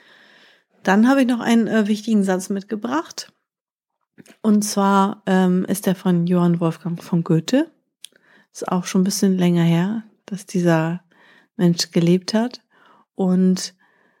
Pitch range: 180-225 Hz